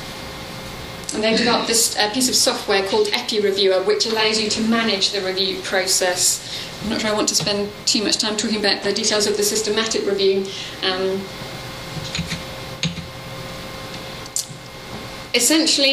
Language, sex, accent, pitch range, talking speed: English, female, British, 200-235 Hz, 145 wpm